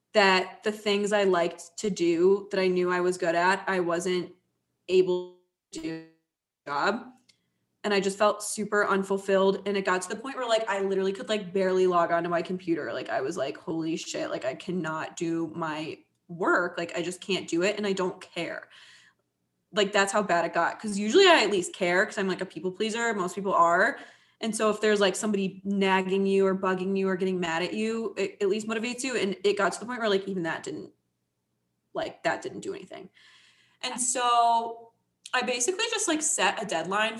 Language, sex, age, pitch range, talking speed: English, female, 20-39, 175-215 Hz, 215 wpm